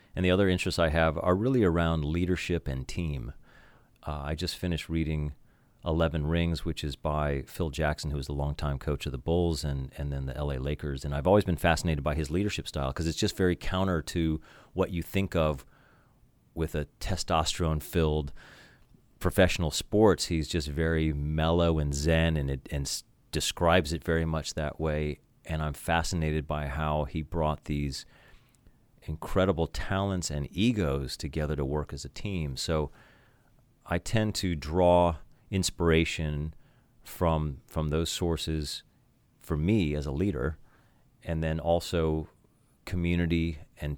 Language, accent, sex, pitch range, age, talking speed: English, American, male, 75-95 Hz, 30-49, 160 wpm